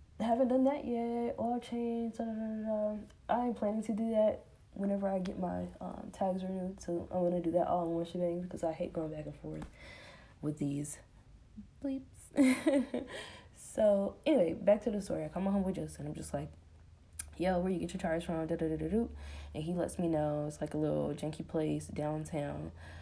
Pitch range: 140-195 Hz